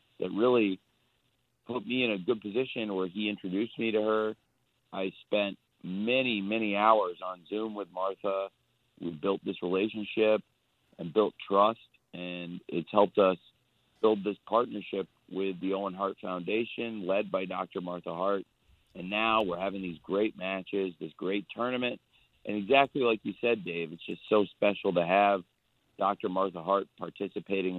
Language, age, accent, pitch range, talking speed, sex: English, 40-59, American, 90-110 Hz, 160 wpm, male